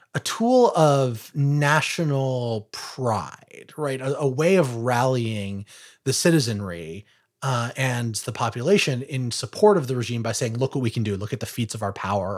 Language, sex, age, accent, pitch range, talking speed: English, male, 30-49, American, 110-145 Hz, 175 wpm